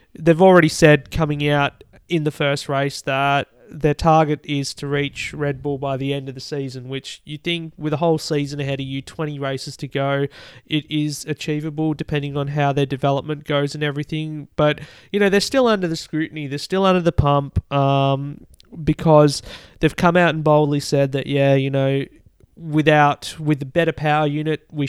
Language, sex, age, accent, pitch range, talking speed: English, male, 20-39, Australian, 140-155 Hz, 195 wpm